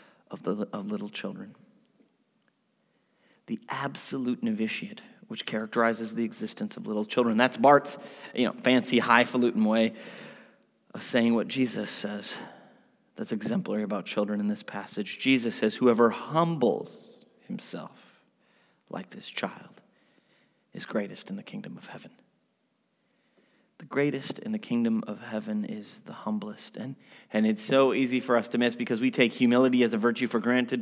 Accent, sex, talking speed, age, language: American, male, 150 wpm, 30-49, English